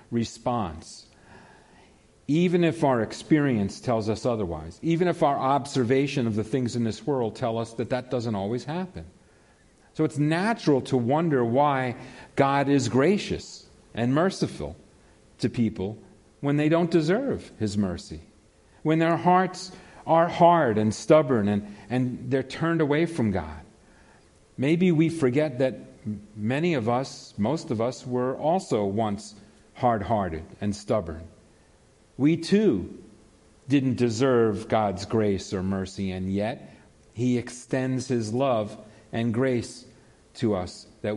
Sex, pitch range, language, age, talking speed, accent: male, 110-145 Hz, English, 40-59, 135 wpm, American